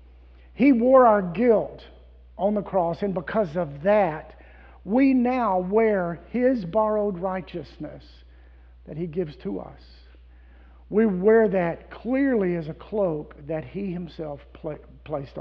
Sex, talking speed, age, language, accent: male, 130 wpm, 50-69, English, American